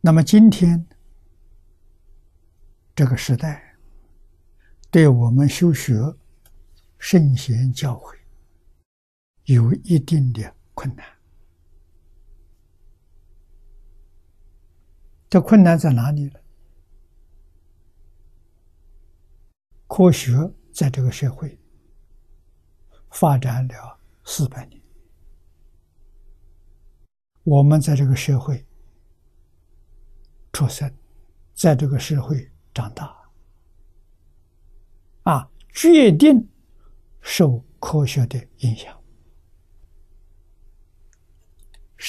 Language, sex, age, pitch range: Chinese, male, 60-79, 80-130 Hz